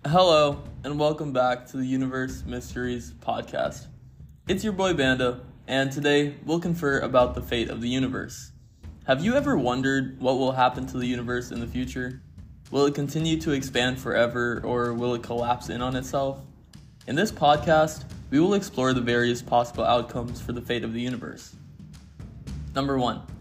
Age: 20-39